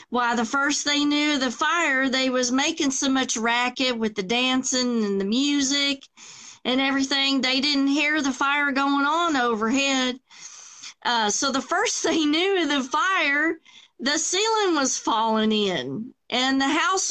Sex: female